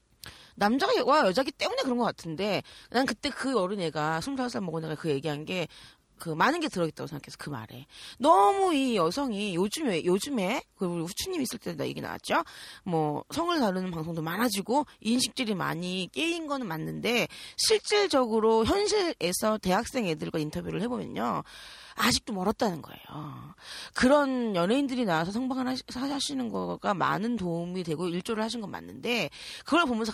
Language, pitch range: Korean, 160-250 Hz